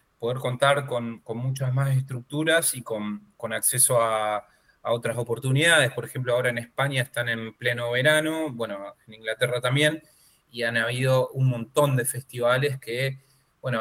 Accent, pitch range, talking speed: Argentinian, 115-145 Hz, 160 wpm